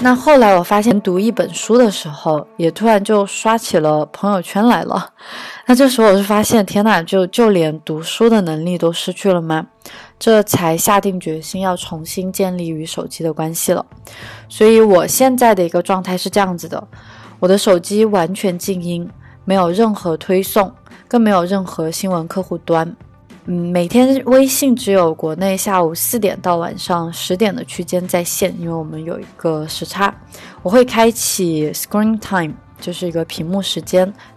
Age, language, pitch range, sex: 20-39, Chinese, 165-205 Hz, female